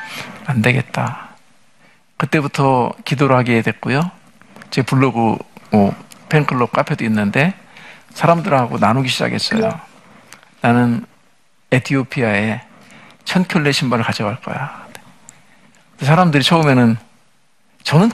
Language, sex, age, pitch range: Korean, male, 50-69, 120-175 Hz